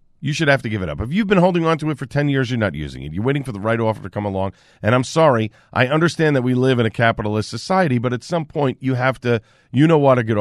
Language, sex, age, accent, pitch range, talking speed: English, male, 40-59, American, 110-155 Hz, 310 wpm